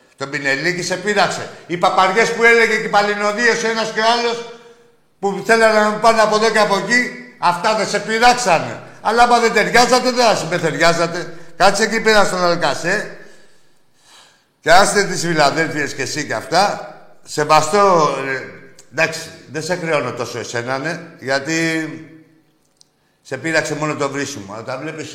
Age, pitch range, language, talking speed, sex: 60-79, 155-210 Hz, Greek, 155 wpm, male